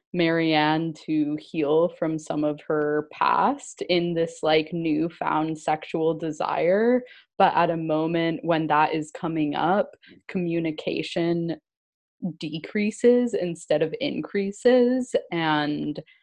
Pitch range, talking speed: 150-175 Hz, 105 wpm